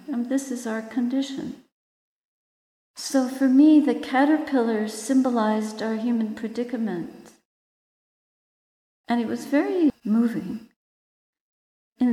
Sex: female